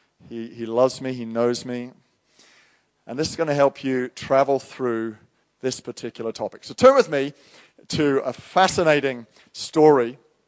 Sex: male